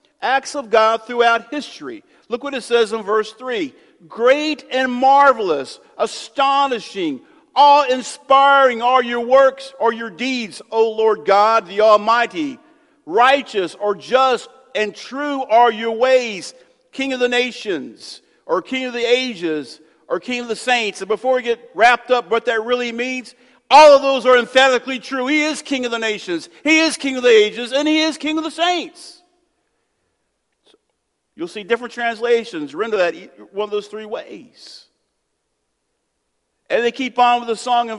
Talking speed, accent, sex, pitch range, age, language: 165 wpm, American, male, 235-300 Hz, 50-69, English